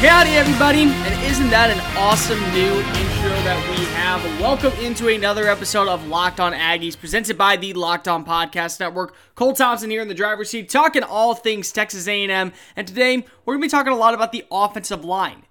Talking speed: 205 wpm